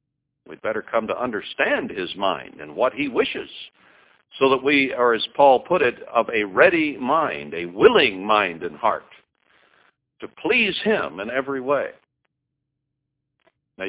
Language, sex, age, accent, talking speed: English, male, 60-79, American, 150 wpm